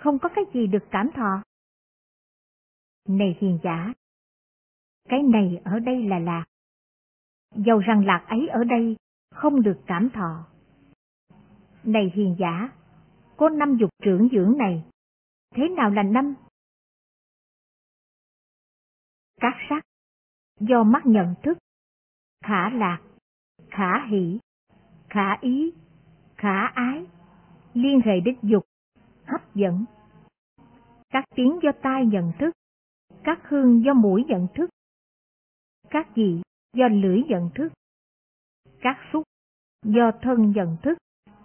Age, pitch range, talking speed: 50-69, 190-250 Hz, 120 wpm